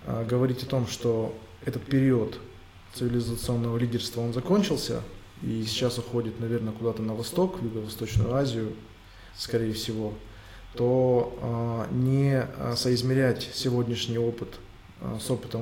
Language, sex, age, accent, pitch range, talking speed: Russian, male, 20-39, native, 105-125 Hz, 110 wpm